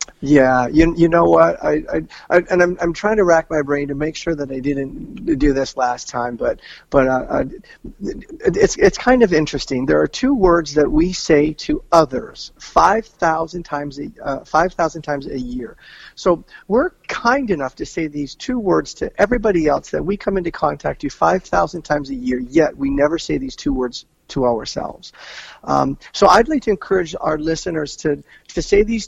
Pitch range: 145-190 Hz